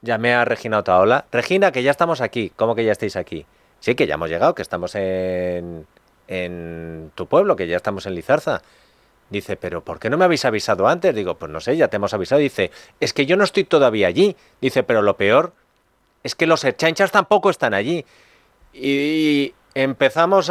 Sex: male